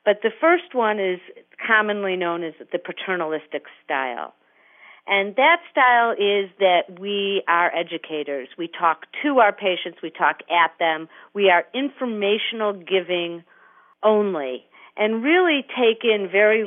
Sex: female